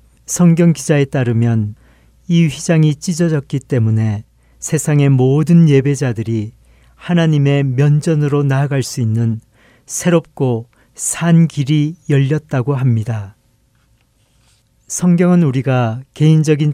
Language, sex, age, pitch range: Korean, male, 40-59, 115-150 Hz